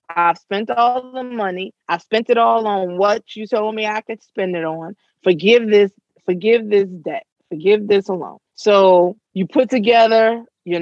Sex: female